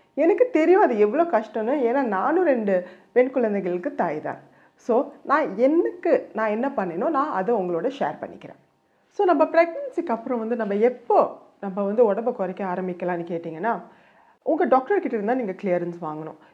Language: Tamil